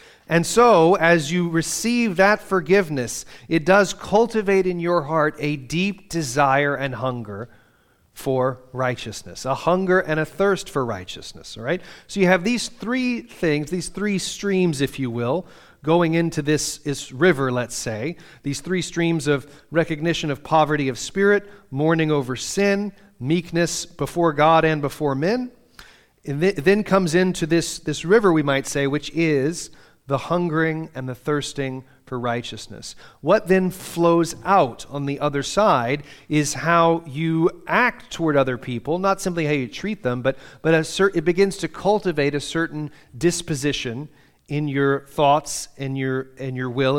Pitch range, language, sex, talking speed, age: 135-175 Hz, English, male, 155 wpm, 40-59